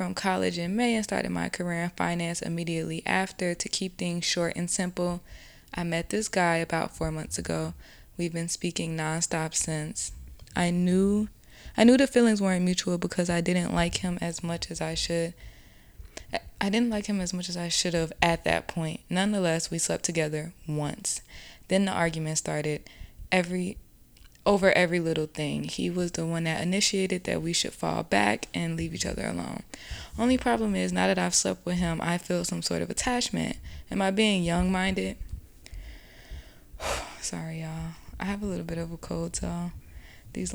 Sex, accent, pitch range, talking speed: female, American, 160-185 Hz, 185 wpm